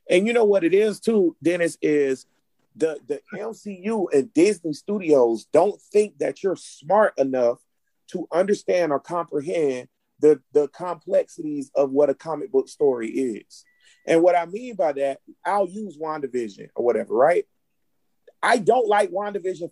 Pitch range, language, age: 165-255 Hz, English, 30-49